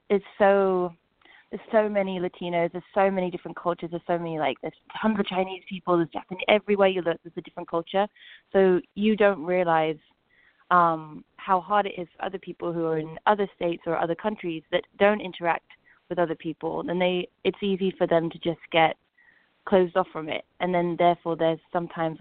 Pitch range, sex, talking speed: 160-185 Hz, female, 195 wpm